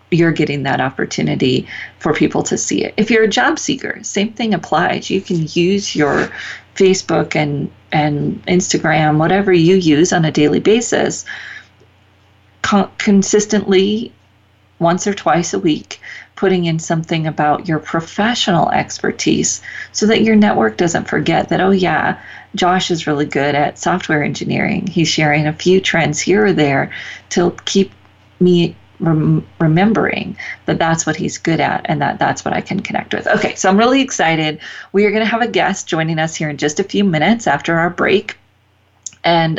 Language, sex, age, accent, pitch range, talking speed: English, female, 40-59, American, 155-195 Hz, 170 wpm